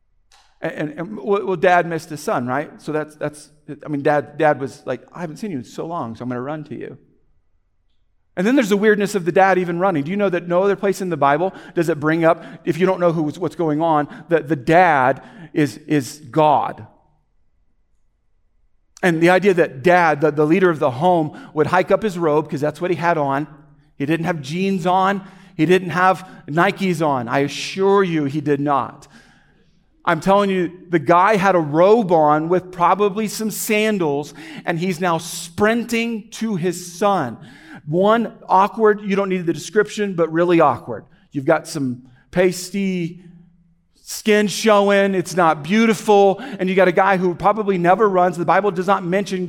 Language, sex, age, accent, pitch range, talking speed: English, male, 50-69, American, 150-195 Hz, 195 wpm